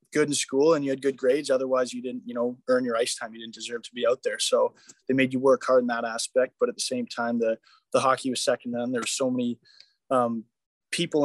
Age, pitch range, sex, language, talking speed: 20-39, 120-145 Hz, male, English, 265 wpm